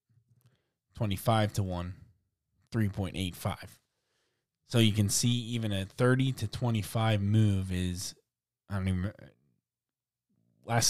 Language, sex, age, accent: English, male, 20-39, American